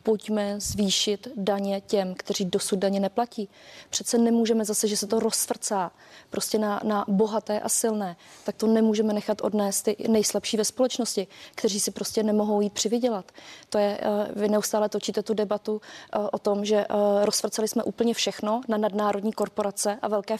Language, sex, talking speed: Czech, female, 160 wpm